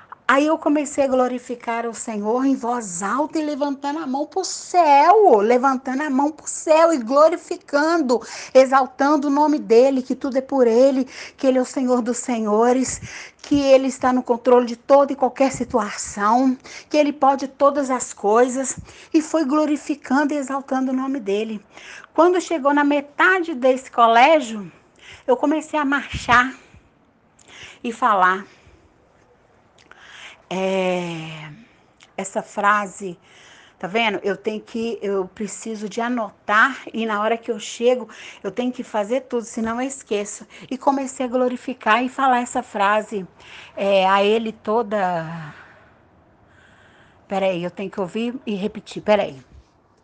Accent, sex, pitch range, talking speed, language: Brazilian, female, 210-275 Hz, 145 wpm, Portuguese